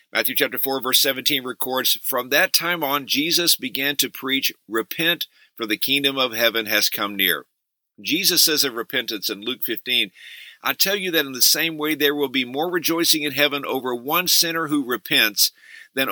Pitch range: 125-160 Hz